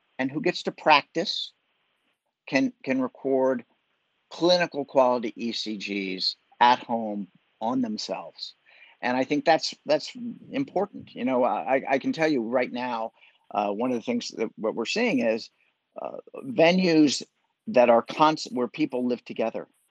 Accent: American